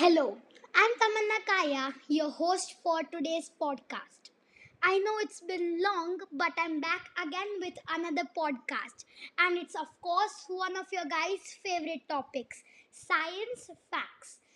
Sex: female